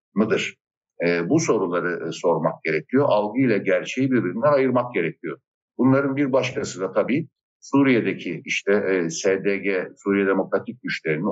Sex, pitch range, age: male, 105-140 Hz, 60-79